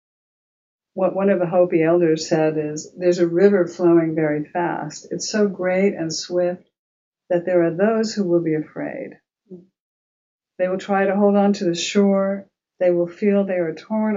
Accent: American